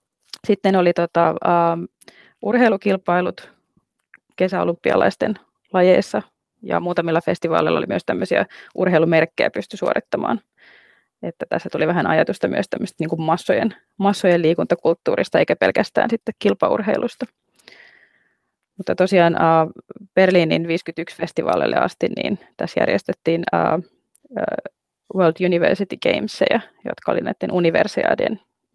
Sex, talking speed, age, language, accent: female, 100 wpm, 20-39, Finnish, native